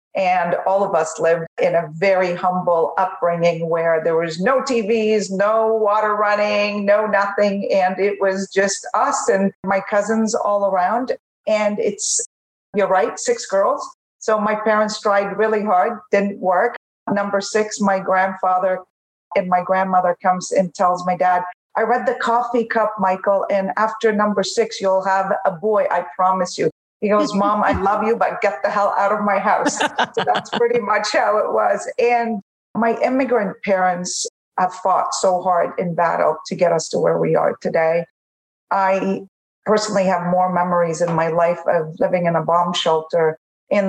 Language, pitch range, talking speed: English, 175-210 Hz, 175 wpm